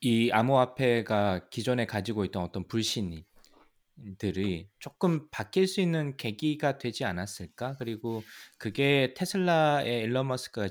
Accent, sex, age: native, male, 20-39